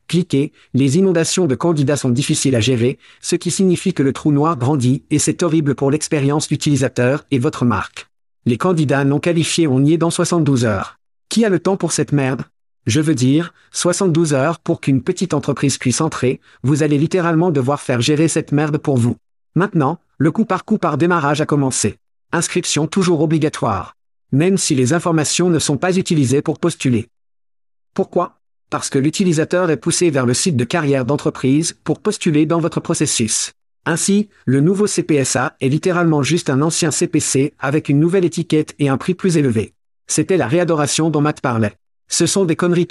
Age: 50-69